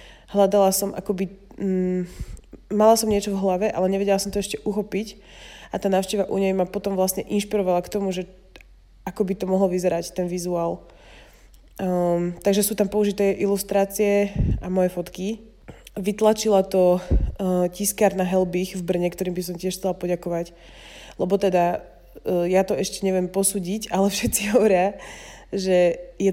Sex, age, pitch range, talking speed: female, 20-39, 180-200 Hz, 155 wpm